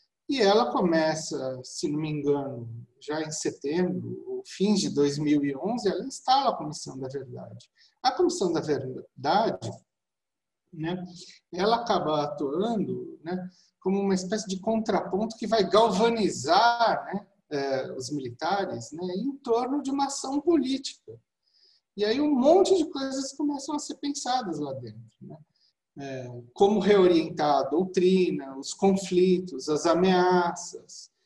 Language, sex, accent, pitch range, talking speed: Portuguese, male, Brazilian, 155-215 Hz, 130 wpm